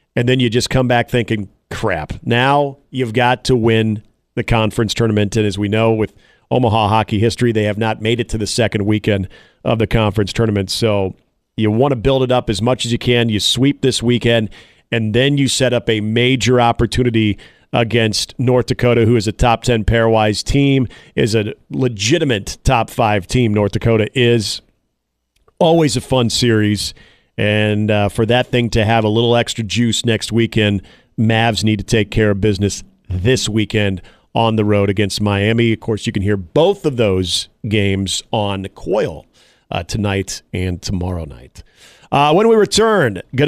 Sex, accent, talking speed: male, American, 180 wpm